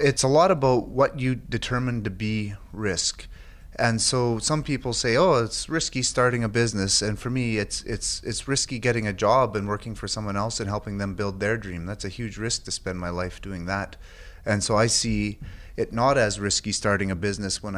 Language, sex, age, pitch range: English, male, 30-49, 95-120 Hz